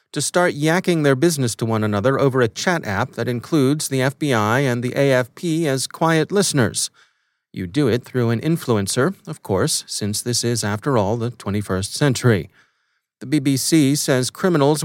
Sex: male